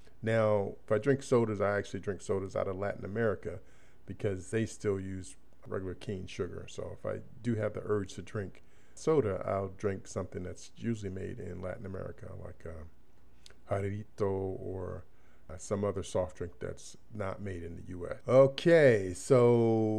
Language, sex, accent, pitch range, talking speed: English, male, American, 100-120 Hz, 160 wpm